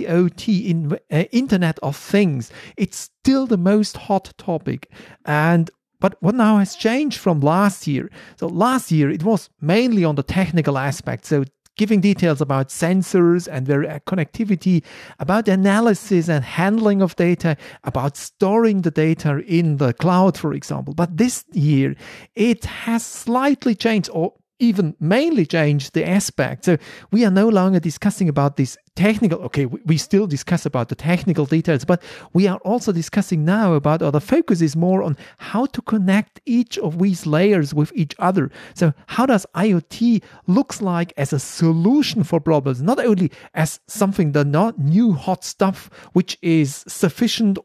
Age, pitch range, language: 40-59, 155-205 Hz, English